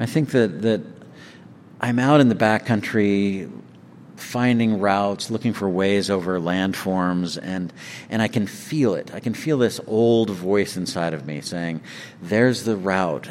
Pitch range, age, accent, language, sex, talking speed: 95-115 Hz, 50-69, American, English, male, 160 wpm